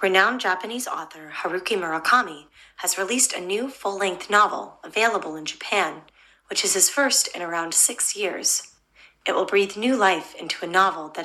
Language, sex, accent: Japanese, female, American